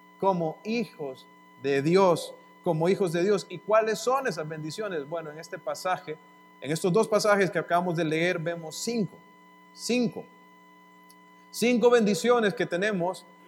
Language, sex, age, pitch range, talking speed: English, male, 40-59, 165-200 Hz, 140 wpm